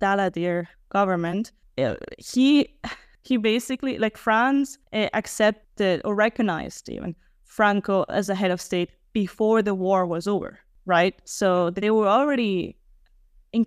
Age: 10-29